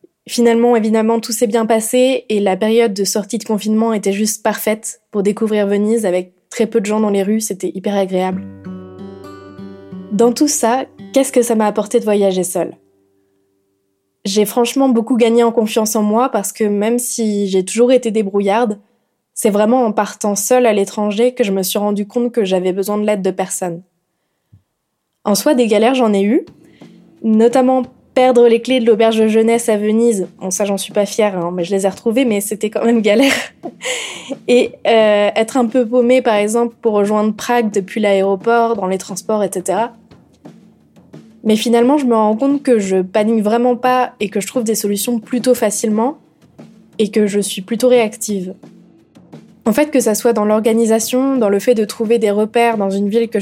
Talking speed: 190 wpm